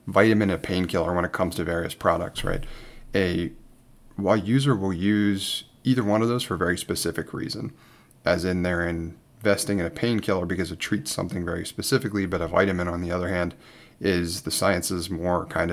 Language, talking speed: English, 190 wpm